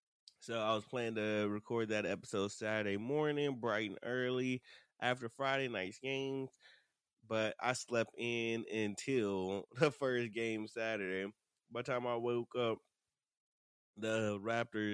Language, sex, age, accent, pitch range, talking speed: English, male, 20-39, American, 105-125 Hz, 135 wpm